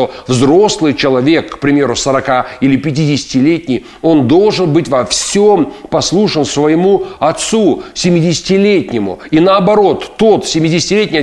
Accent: native